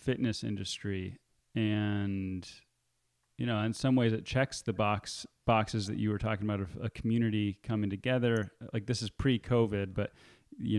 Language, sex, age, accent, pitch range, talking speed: English, male, 30-49, American, 105-120 Hz, 160 wpm